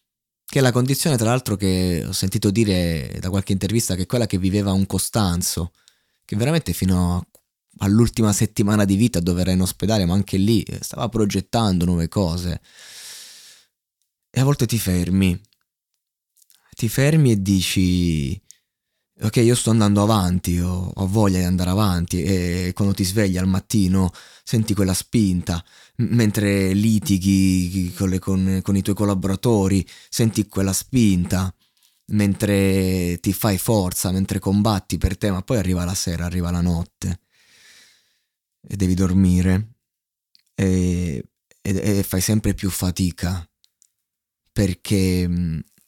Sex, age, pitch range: male, 20-39, 90-105 Hz